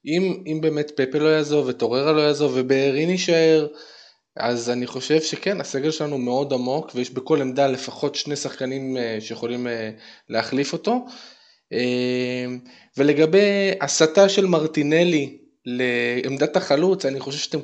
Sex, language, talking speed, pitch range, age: male, Hebrew, 125 wpm, 125-155 Hz, 20-39